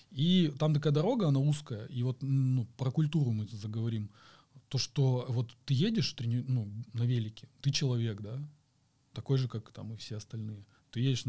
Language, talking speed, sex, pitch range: Russian, 175 wpm, male, 115-145 Hz